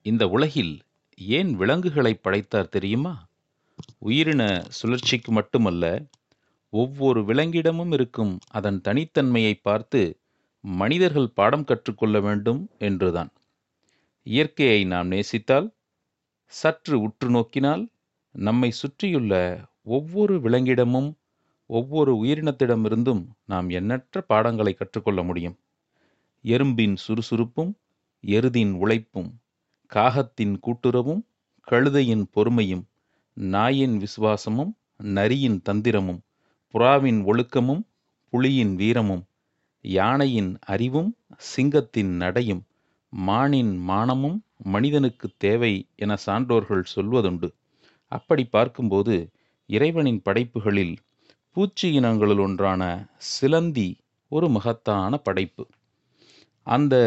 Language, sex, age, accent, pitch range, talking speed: Tamil, male, 40-59, native, 100-135 Hz, 80 wpm